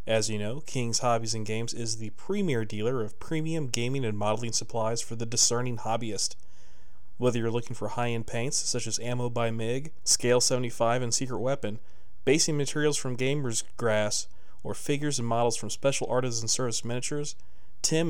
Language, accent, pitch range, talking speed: English, American, 105-125 Hz, 170 wpm